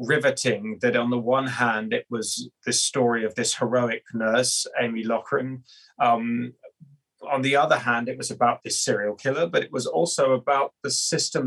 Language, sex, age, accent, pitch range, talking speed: English, male, 30-49, British, 120-150 Hz, 180 wpm